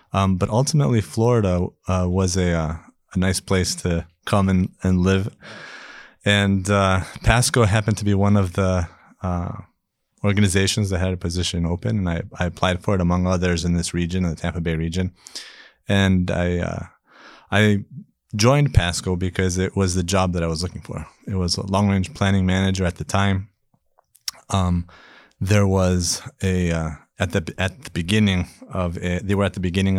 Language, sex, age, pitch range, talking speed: English, male, 20-39, 85-95 Hz, 180 wpm